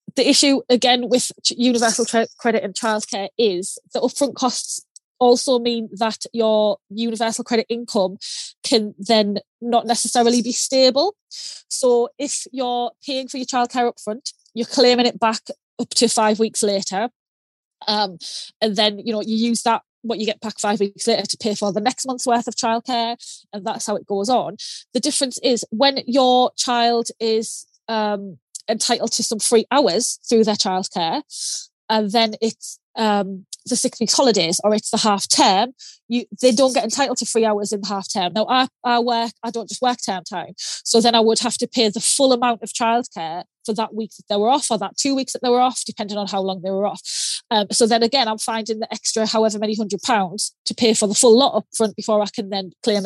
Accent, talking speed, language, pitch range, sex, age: British, 210 wpm, English, 210-245 Hz, female, 20-39